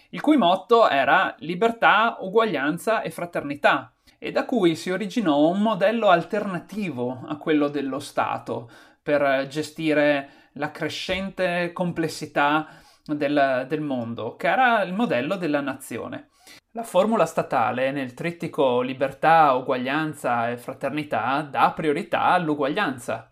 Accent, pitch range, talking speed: native, 150-210 Hz, 120 wpm